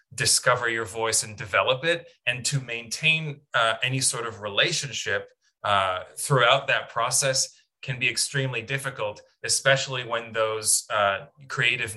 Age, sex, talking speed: 20-39, male, 135 wpm